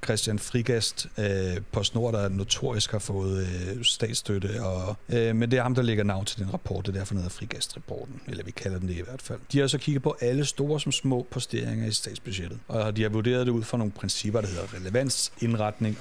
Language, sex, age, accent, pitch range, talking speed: Danish, male, 60-79, native, 100-125 Hz, 215 wpm